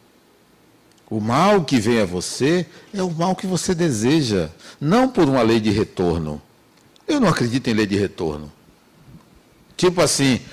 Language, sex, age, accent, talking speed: Portuguese, male, 60-79, Brazilian, 155 wpm